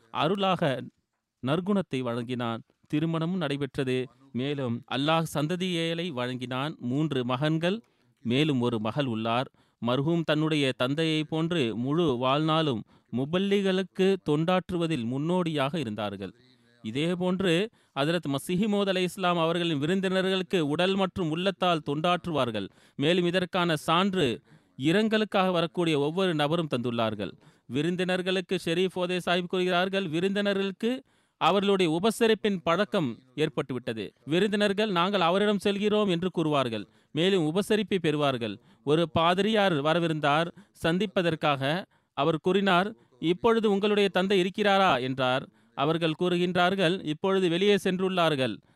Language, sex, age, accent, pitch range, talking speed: Tamil, male, 30-49, native, 140-190 Hz, 95 wpm